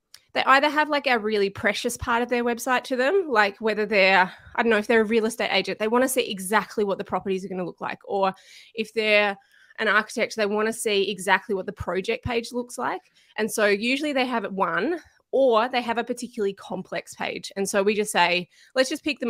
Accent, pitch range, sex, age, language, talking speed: Australian, 180-220 Hz, female, 20-39, English, 235 wpm